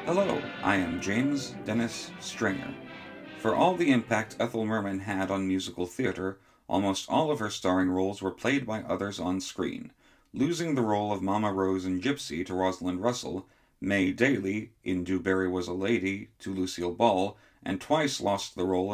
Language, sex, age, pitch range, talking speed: English, male, 40-59, 95-115 Hz, 170 wpm